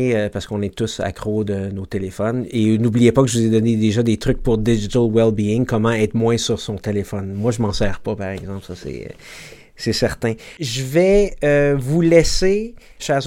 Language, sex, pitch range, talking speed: French, male, 115-140 Hz, 210 wpm